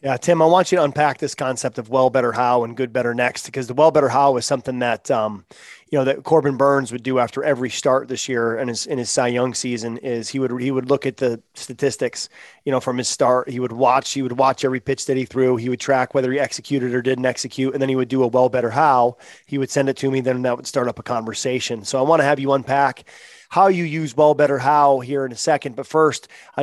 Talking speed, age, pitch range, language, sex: 275 wpm, 30-49, 130-155 Hz, English, male